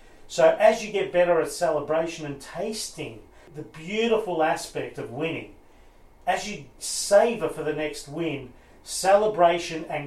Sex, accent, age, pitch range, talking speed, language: male, Australian, 40-59, 150-195 Hz, 135 wpm, English